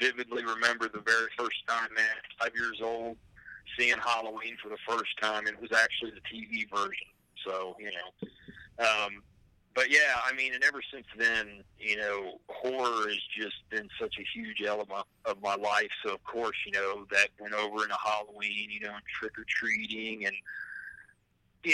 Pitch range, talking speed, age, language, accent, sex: 105-135 Hz, 175 wpm, 40-59, English, American, male